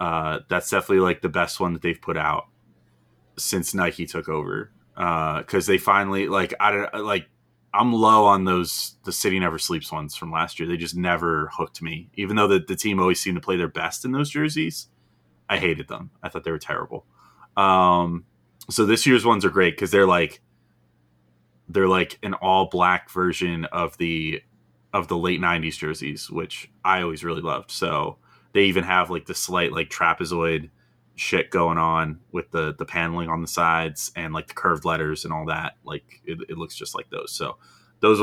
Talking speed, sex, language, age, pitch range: 200 wpm, male, English, 20-39, 80-105 Hz